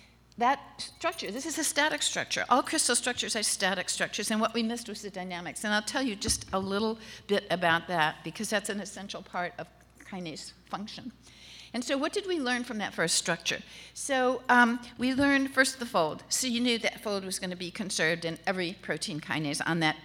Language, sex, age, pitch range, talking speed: English, female, 50-69, 180-240 Hz, 215 wpm